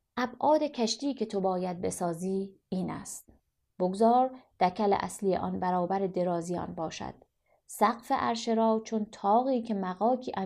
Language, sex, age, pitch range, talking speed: Persian, female, 30-49, 185-235 Hz, 125 wpm